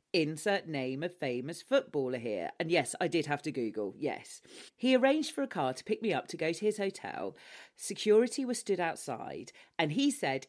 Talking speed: 200 wpm